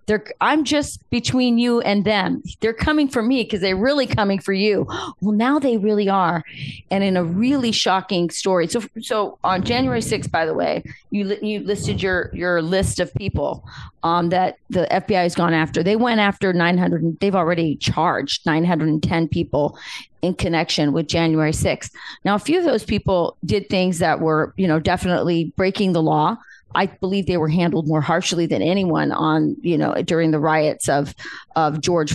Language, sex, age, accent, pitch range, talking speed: English, female, 40-59, American, 170-235 Hz, 185 wpm